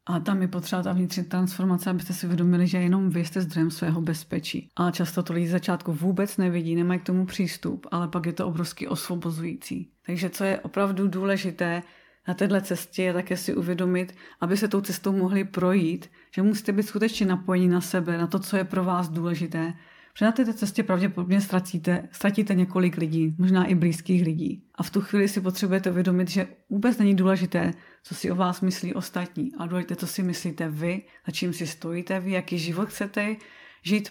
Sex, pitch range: female, 175-195 Hz